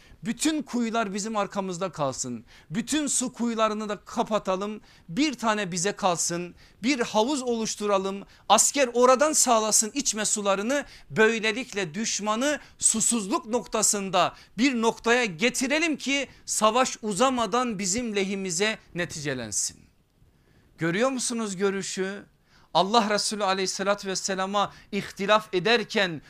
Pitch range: 190-240 Hz